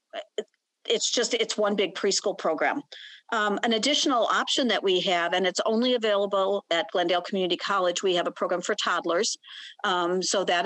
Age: 50-69